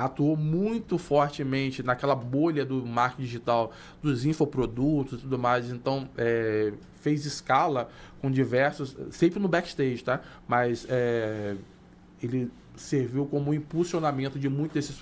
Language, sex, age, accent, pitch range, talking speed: Portuguese, male, 20-39, Brazilian, 125-150 Hz, 130 wpm